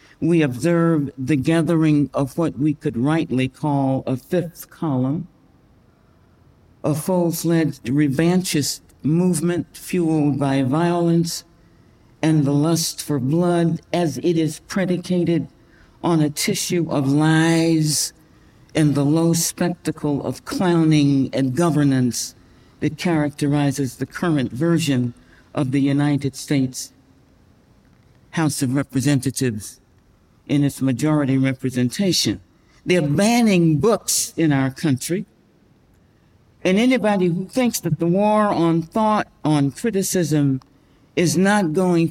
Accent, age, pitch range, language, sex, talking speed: American, 60-79, 130-170 Hz, English, male, 110 wpm